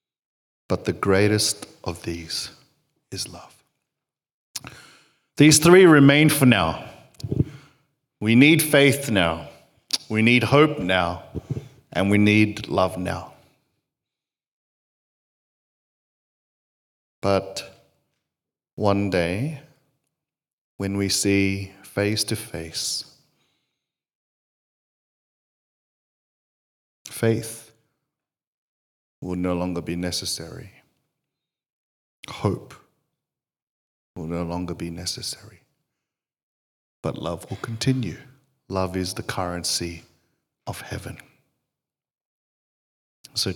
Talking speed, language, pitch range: 80 wpm, English, 90-130 Hz